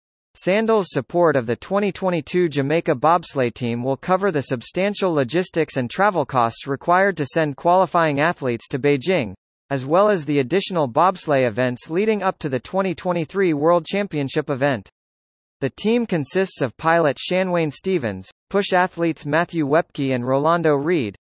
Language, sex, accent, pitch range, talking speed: English, male, American, 135-180 Hz, 145 wpm